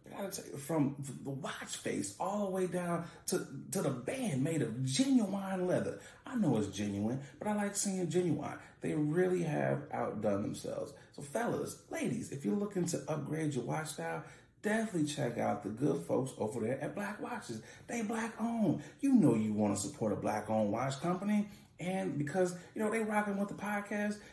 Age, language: 30-49, English